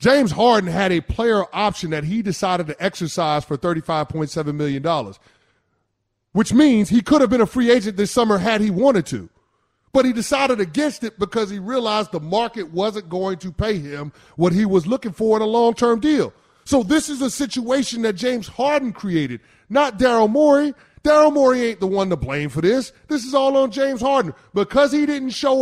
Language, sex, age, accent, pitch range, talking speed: English, male, 30-49, American, 175-245 Hz, 195 wpm